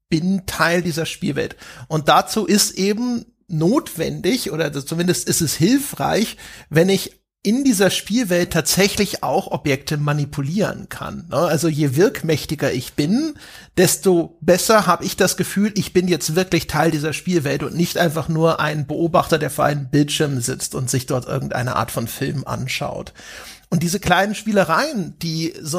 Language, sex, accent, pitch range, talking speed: German, male, German, 160-195 Hz, 155 wpm